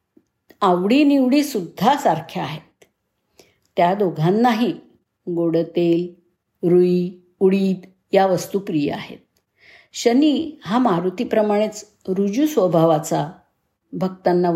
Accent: native